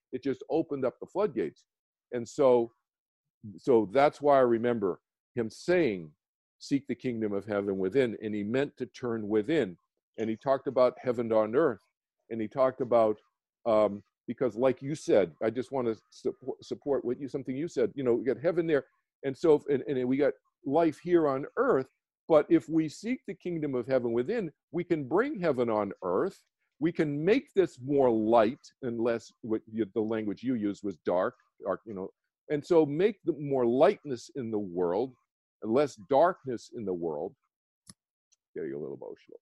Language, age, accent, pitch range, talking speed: English, 50-69, American, 115-160 Hz, 185 wpm